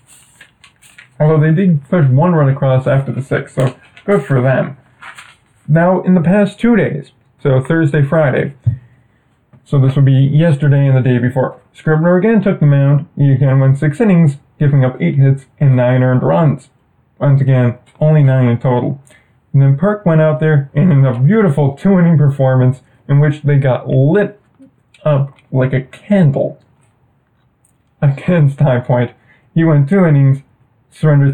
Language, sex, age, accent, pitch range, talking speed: English, male, 20-39, American, 130-150 Hz, 165 wpm